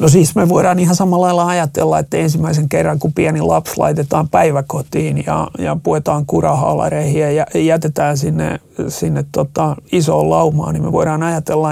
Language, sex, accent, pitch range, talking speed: Finnish, male, native, 145-170 Hz, 160 wpm